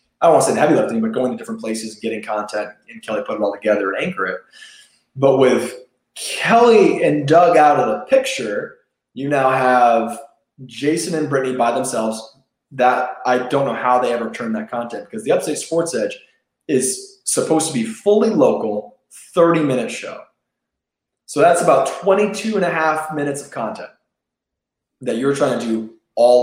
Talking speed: 180 wpm